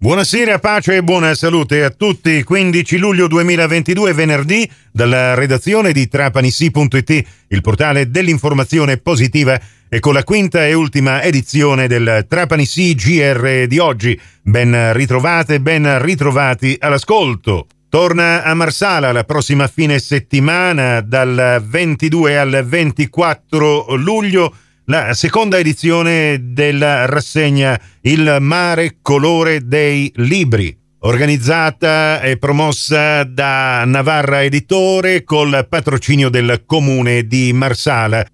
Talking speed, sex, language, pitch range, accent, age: 110 wpm, male, Italian, 125-160 Hz, native, 40-59